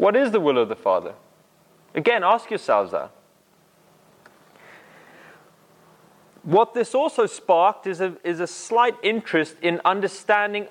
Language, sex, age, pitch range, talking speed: English, male, 20-39, 145-220 Hz, 130 wpm